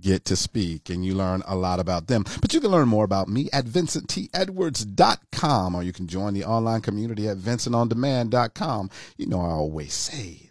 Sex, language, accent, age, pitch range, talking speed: male, English, American, 50-69, 95-135 Hz, 190 wpm